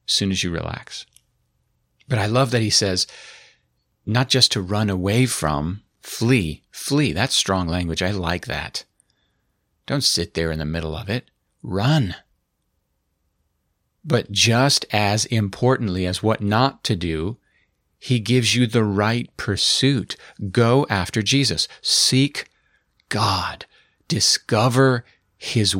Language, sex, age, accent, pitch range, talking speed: English, male, 50-69, American, 90-120 Hz, 130 wpm